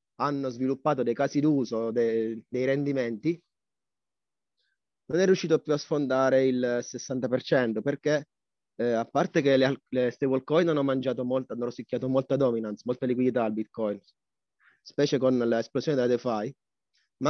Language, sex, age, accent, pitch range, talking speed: Italian, male, 30-49, native, 120-145 Hz, 140 wpm